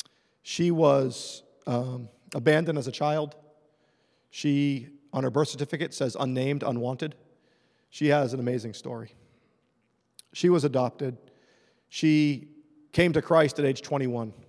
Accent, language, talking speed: American, English, 125 wpm